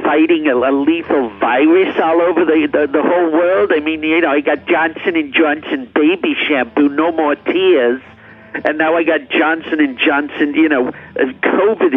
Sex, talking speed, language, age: male, 175 wpm, English, 60-79